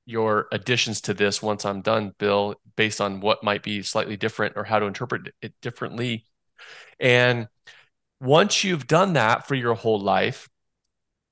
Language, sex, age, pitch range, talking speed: English, male, 30-49, 105-130 Hz, 160 wpm